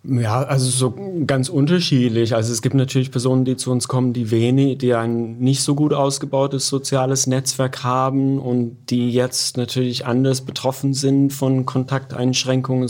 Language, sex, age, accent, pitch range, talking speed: German, male, 30-49, German, 110-130 Hz, 160 wpm